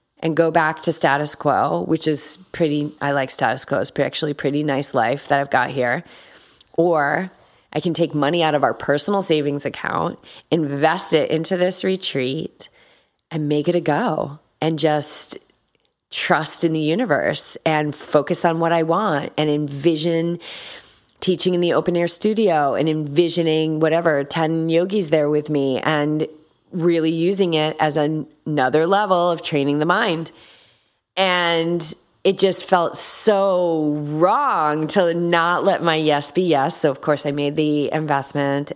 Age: 30-49